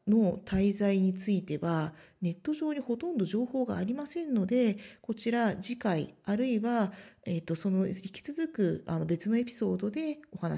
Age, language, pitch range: 40-59, Japanese, 185-285 Hz